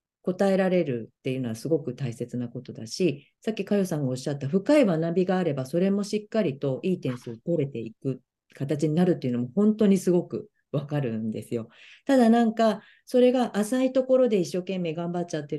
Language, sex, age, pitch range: Japanese, female, 40-59, 135-210 Hz